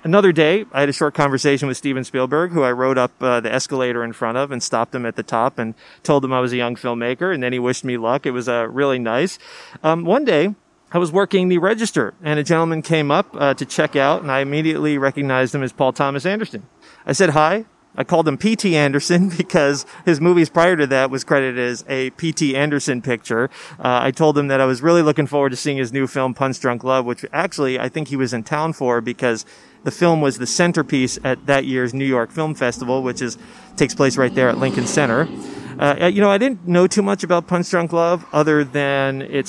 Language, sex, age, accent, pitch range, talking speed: English, male, 30-49, American, 130-175 Hz, 235 wpm